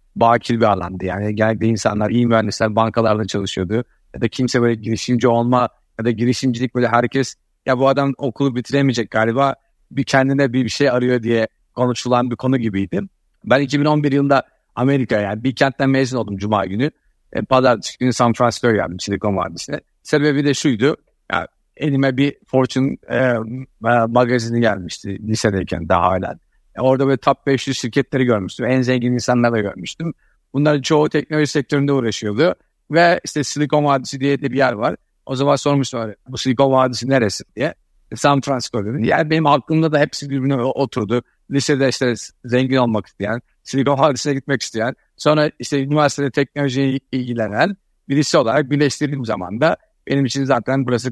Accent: native